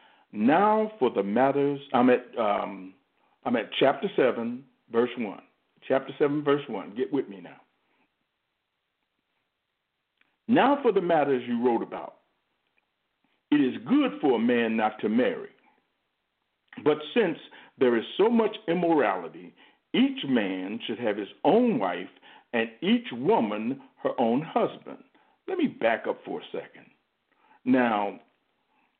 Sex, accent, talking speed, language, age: male, American, 135 wpm, English, 50-69